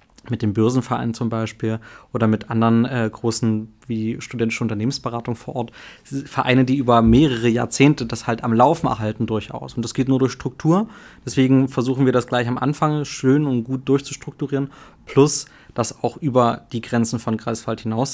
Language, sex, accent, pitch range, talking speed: German, male, German, 115-135 Hz, 170 wpm